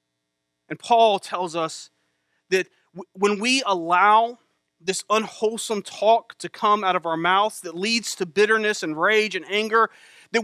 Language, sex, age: English, male, 30-49